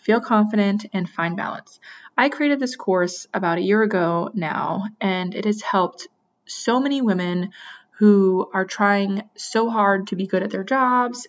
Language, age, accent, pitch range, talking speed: English, 20-39, American, 180-215 Hz, 170 wpm